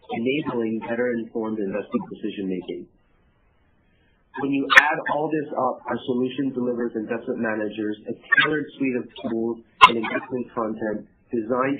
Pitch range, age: 105-130 Hz, 40-59